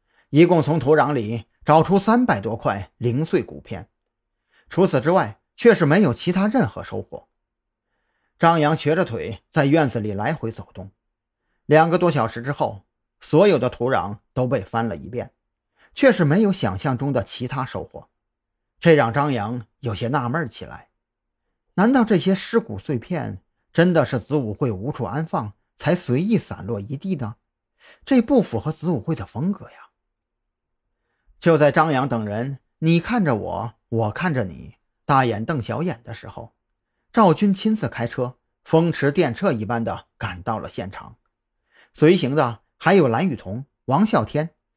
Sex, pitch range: male, 115-170 Hz